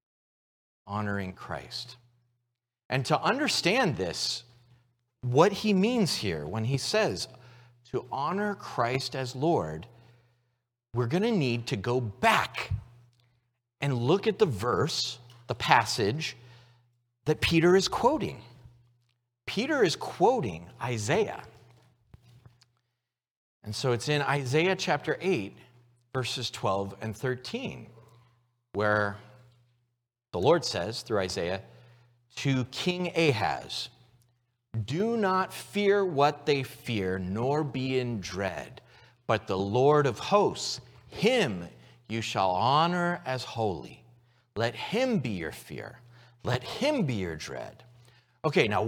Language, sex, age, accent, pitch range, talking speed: English, male, 40-59, American, 120-140 Hz, 115 wpm